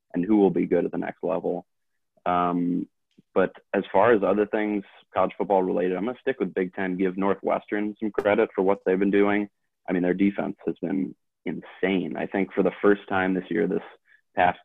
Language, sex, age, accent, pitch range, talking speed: English, male, 20-39, American, 90-100 Hz, 210 wpm